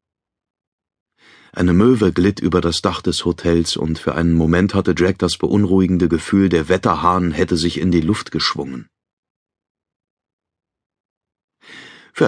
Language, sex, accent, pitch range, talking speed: German, male, German, 85-105 Hz, 125 wpm